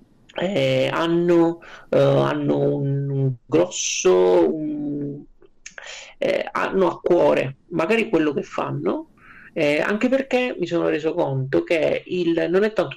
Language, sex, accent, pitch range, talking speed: Italian, male, native, 135-180 Hz, 125 wpm